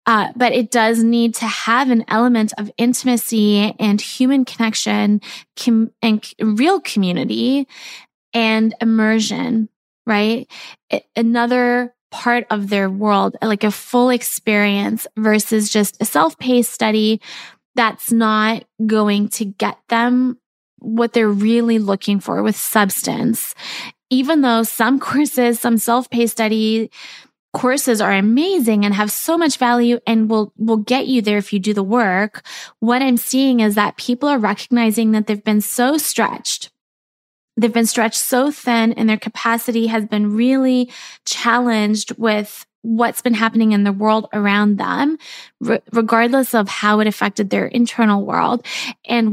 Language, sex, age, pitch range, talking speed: English, female, 20-39, 215-245 Hz, 140 wpm